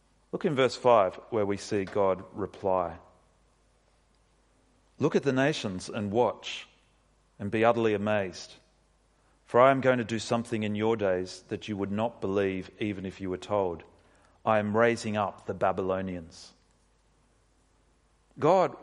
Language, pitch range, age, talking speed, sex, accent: English, 105-155 Hz, 40-59, 145 wpm, male, Australian